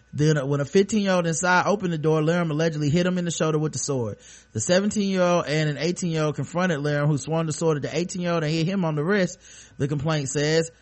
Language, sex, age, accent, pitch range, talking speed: English, male, 30-49, American, 135-165 Hz, 270 wpm